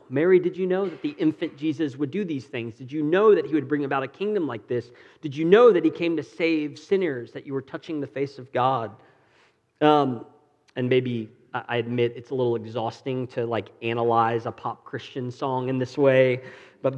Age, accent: 40-59, American